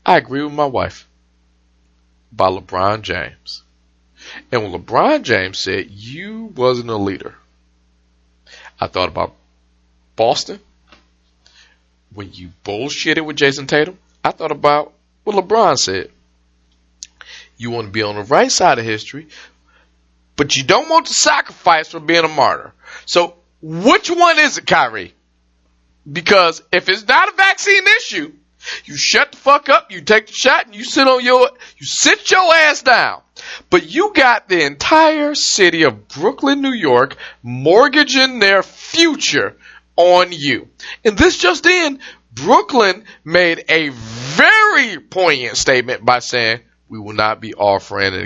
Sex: male